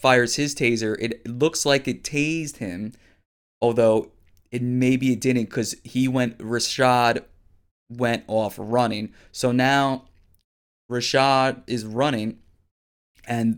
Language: English